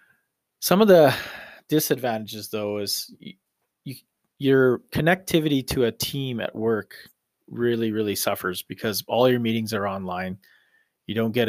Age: 30-49